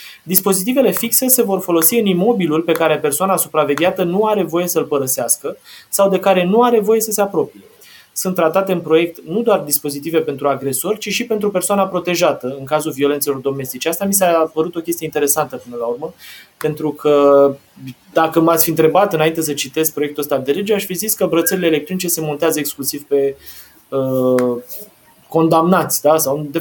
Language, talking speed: Romanian, 185 wpm